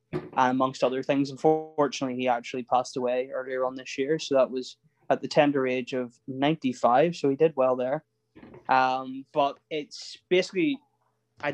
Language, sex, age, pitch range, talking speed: English, male, 20-39, 125-135 Hz, 165 wpm